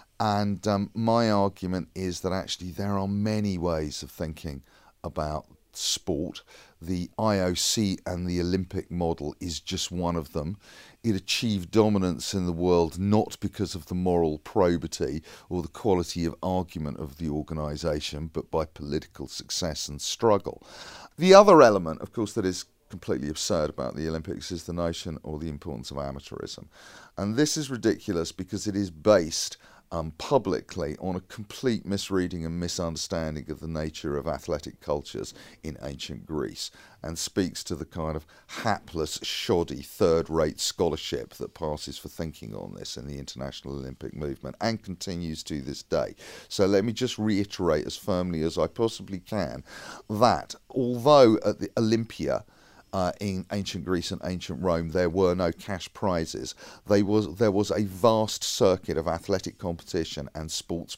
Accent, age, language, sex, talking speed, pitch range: British, 40-59, English, male, 160 wpm, 80-100 Hz